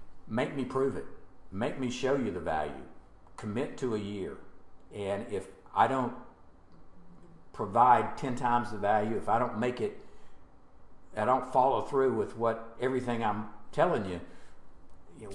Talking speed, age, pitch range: 155 wpm, 50-69, 90-110 Hz